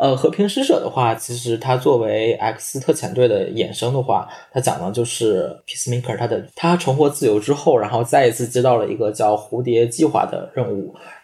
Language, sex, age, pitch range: Chinese, male, 20-39, 115-140 Hz